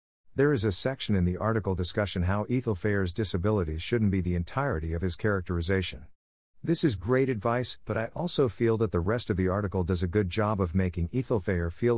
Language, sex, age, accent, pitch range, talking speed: English, male, 50-69, American, 85-110 Hz, 200 wpm